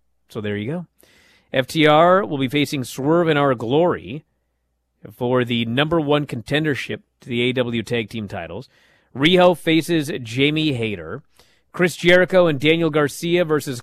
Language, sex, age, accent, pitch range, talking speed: English, male, 40-59, American, 105-150 Hz, 145 wpm